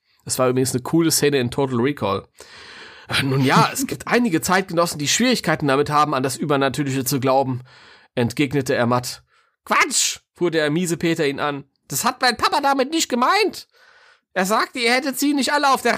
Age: 30-49